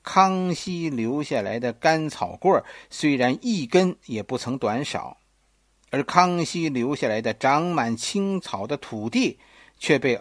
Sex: male